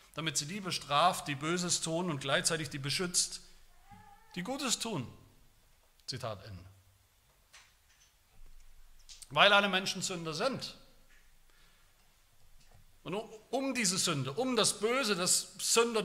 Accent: German